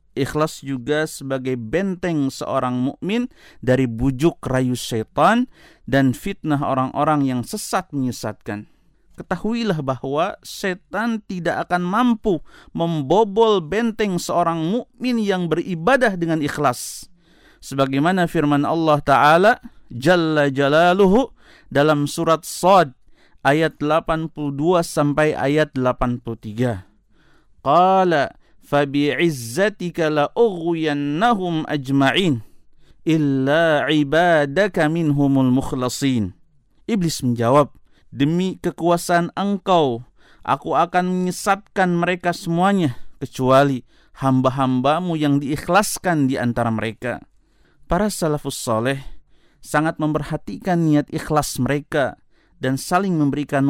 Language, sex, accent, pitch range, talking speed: Indonesian, male, native, 135-180 Hz, 90 wpm